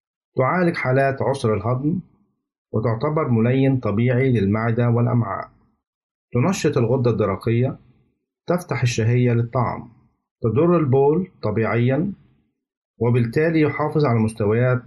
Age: 50-69